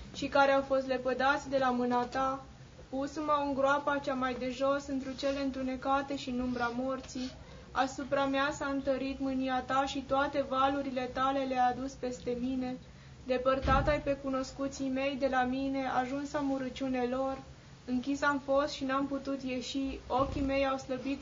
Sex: female